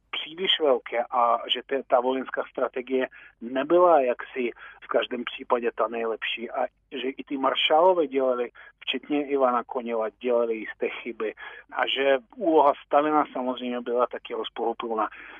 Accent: native